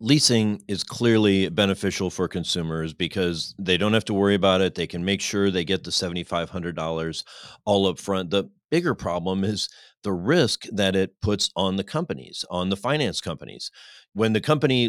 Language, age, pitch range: English, 40-59, 95-115 Hz